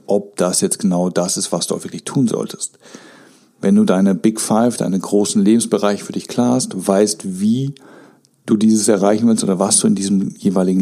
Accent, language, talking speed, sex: German, German, 195 wpm, male